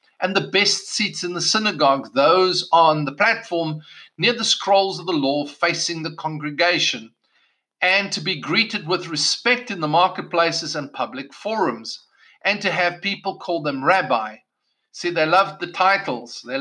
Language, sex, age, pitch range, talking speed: English, male, 50-69, 170-230 Hz, 165 wpm